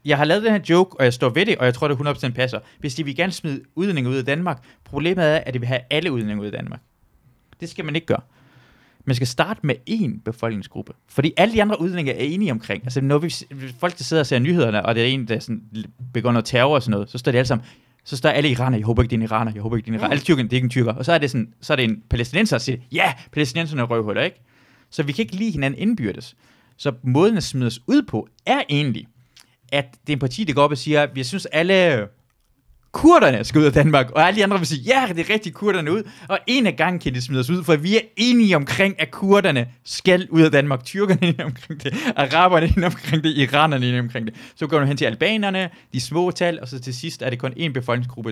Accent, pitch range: native, 125-170 Hz